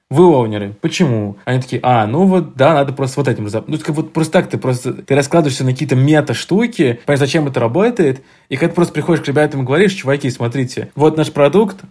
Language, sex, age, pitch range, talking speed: Russian, male, 20-39, 115-150 Hz, 220 wpm